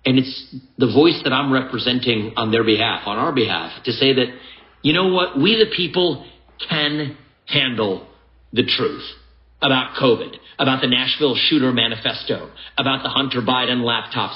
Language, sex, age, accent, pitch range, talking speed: English, male, 50-69, American, 115-145 Hz, 160 wpm